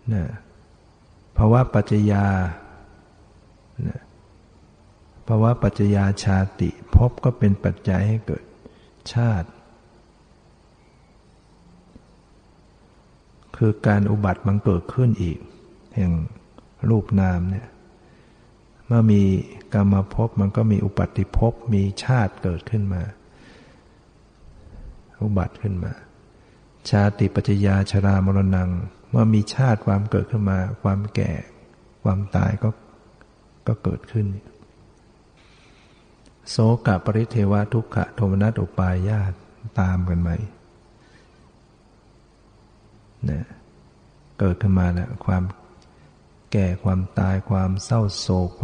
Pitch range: 95-110 Hz